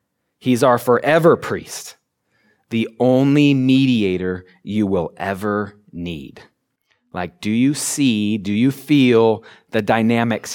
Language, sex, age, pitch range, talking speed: English, male, 30-49, 100-125 Hz, 115 wpm